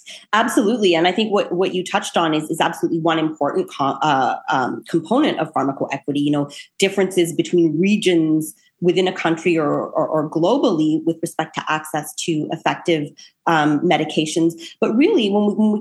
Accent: American